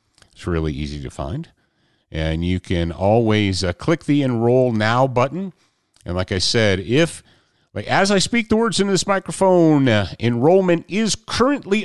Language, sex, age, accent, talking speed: English, male, 40-59, American, 160 wpm